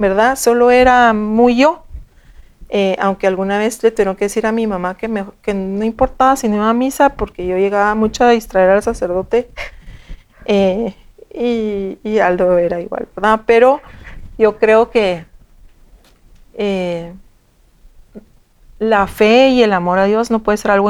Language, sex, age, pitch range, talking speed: Spanish, female, 40-59, 185-230 Hz, 165 wpm